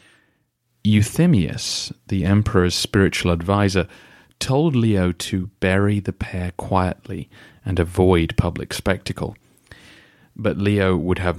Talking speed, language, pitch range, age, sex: 105 wpm, English, 90-120 Hz, 30-49, male